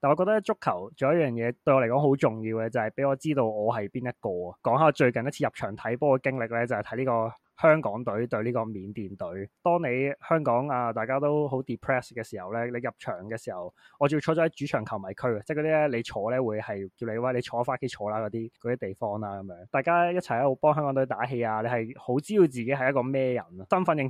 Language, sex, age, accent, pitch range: Chinese, male, 20-39, native, 110-140 Hz